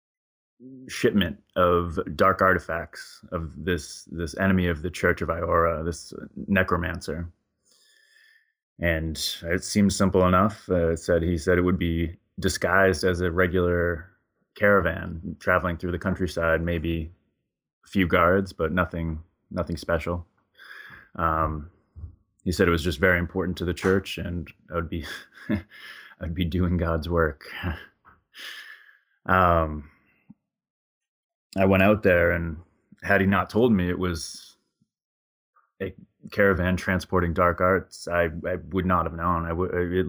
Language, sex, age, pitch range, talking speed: English, male, 20-39, 85-95 Hz, 135 wpm